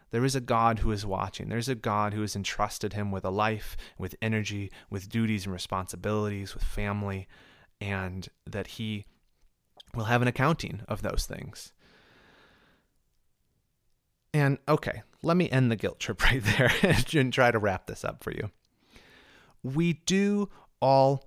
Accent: American